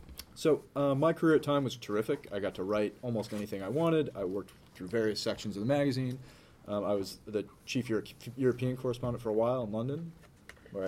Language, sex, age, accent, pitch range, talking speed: English, male, 30-49, American, 100-125 Hz, 205 wpm